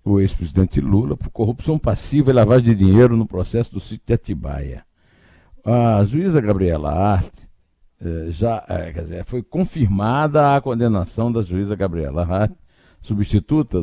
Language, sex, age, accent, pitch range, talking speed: Portuguese, male, 60-79, Brazilian, 80-110 Hz, 145 wpm